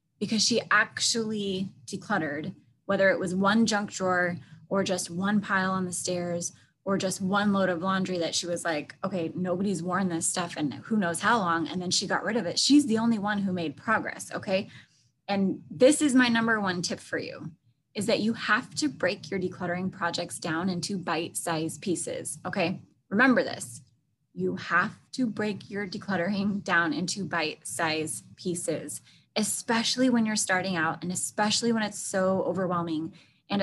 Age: 20-39